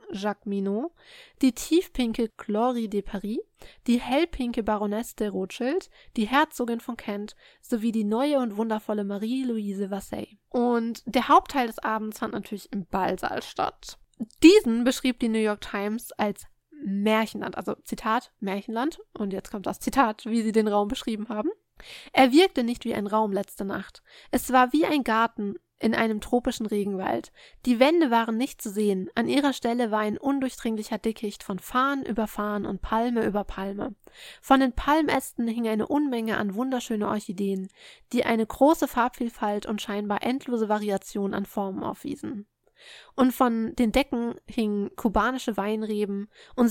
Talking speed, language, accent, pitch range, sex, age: 155 wpm, German, German, 210-255 Hz, female, 20-39